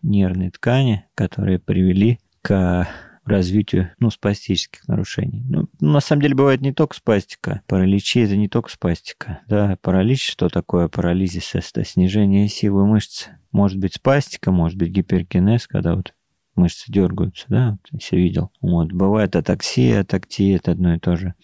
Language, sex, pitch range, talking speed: Russian, male, 90-115 Hz, 155 wpm